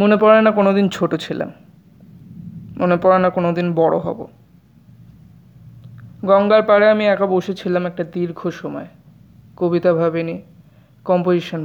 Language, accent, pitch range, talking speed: Bengali, native, 160-190 Hz, 130 wpm